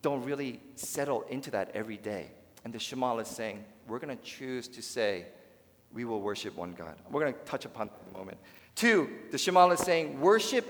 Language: English